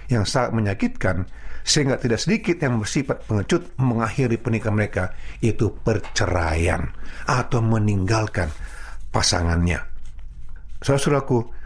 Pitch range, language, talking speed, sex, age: 95-140 Hz, Indonesian, 95 wpm, male, 50-69